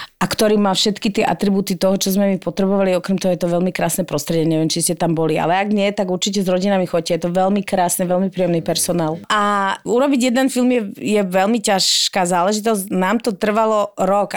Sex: female